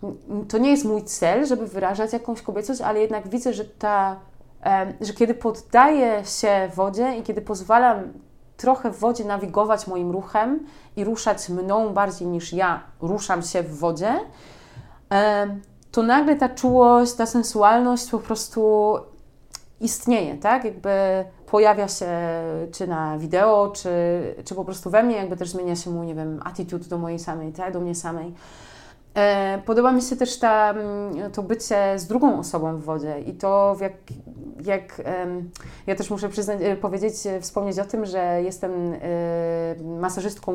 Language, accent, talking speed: Polish, native, 150 wpm